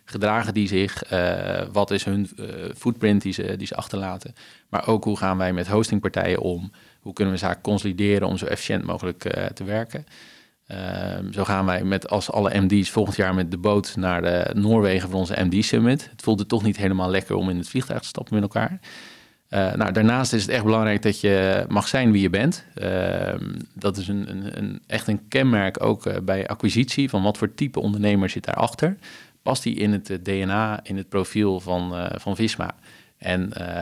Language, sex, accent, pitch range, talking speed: Dutch, male, Dutch, 95-110 Hz, 205 wpm